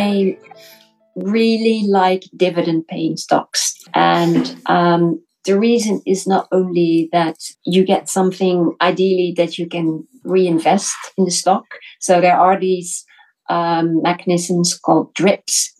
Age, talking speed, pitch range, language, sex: 40-59, 120 wpm, 175-210 Hz, English, female